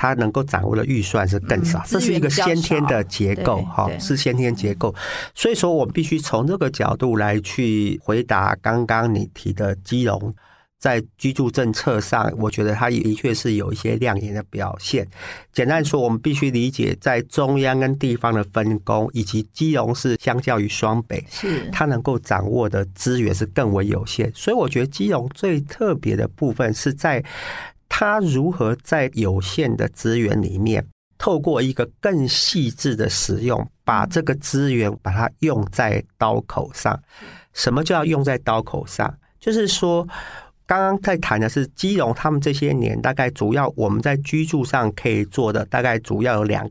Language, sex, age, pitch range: Chinese, male, 40-59, 110-145 Hz